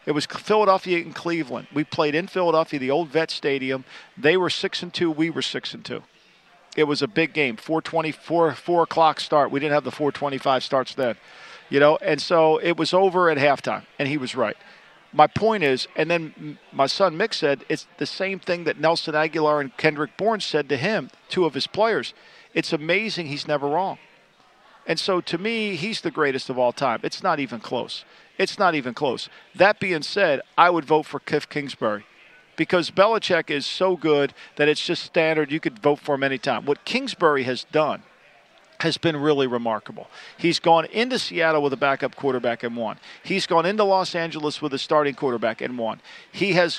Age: 50-69